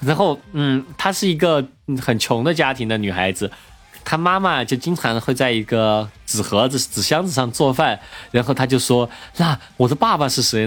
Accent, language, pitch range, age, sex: native, Chinese, 115-150 Hz, 20-39, male